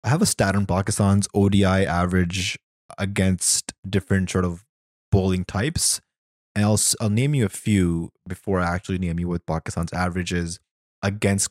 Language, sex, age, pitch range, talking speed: English, male, 20-39, 95-120 Hz, 155 wpm